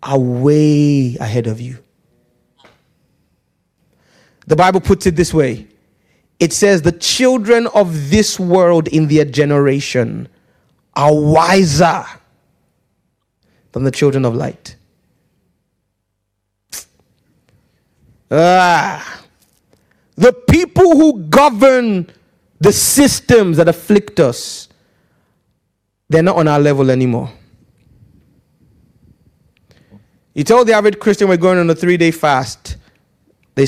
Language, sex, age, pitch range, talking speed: English, male, 30-49, 125-185 Hz, 100 wpm